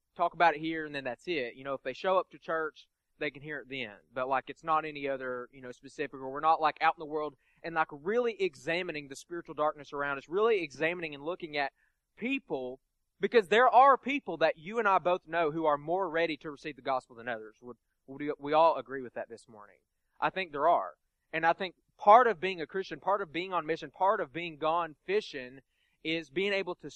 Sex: male